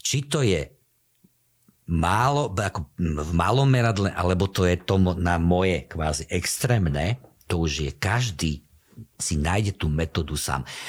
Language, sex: Slovak, male